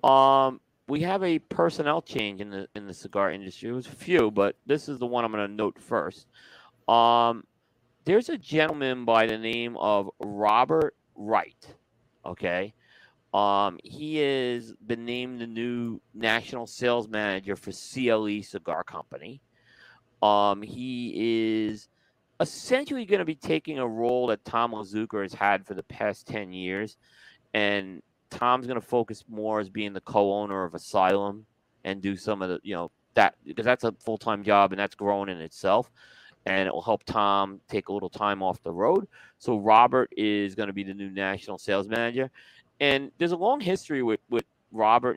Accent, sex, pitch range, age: American, male, 100-120 Hz, 40-59